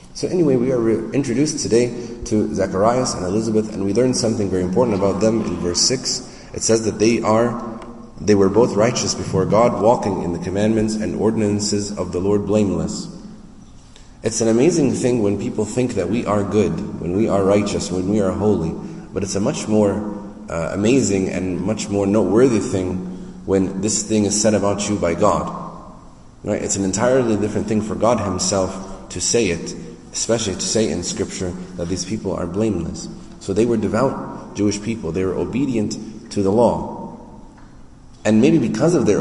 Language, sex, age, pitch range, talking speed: English, male, 30-49, 100-115 Hz, 185 wpm